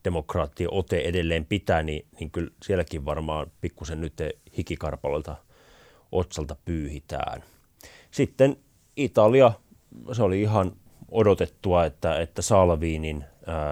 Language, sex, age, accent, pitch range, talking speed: Finnish, male, 30-49, native, 80-95 Hz, 100 wpm